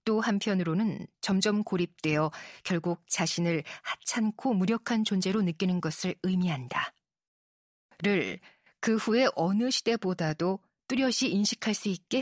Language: Korean